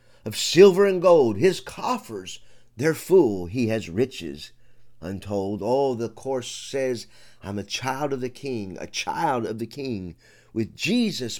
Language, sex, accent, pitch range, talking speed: English, male, American, 110-150 Hz, 155 wpm